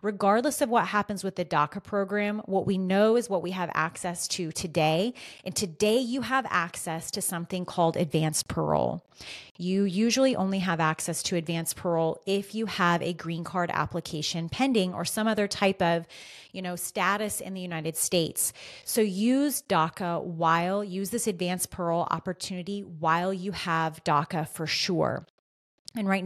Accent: American